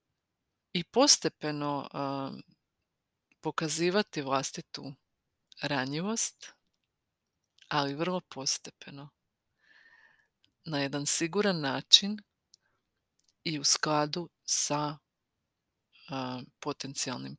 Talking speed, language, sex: 60 wpm, Croatian, female